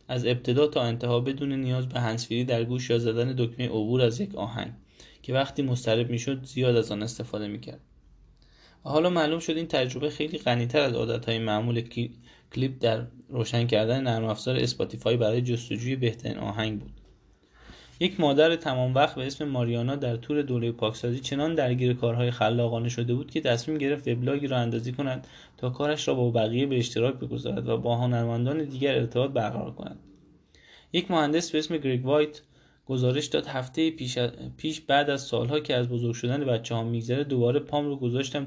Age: 10-29